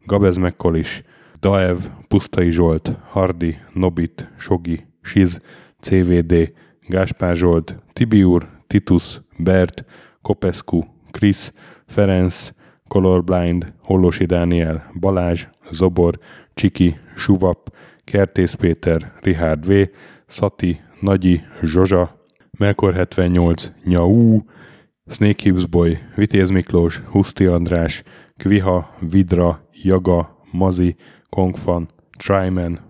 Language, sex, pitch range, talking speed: Hungarian, male, 85-100 Hz, 85 wpm